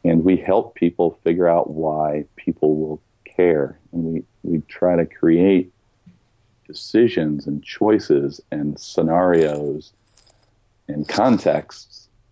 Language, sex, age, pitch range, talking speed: English, male, 40-59, 75-90 Hz, 110 wpm